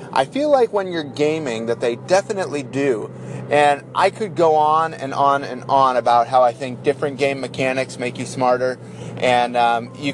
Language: English